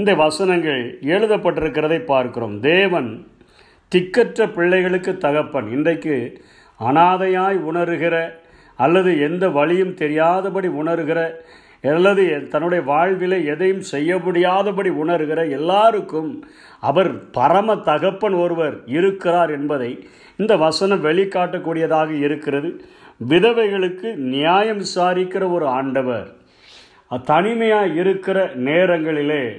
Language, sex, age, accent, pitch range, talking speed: Tamil, male, 50-69, native, 160-190 Hz, 85 wpm